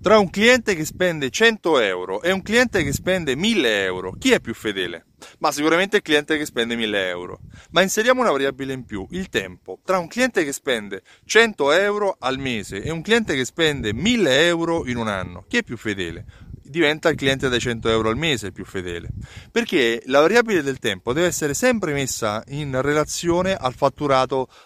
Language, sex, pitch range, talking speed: Italian, male, 115-195 Hz, 195 wpm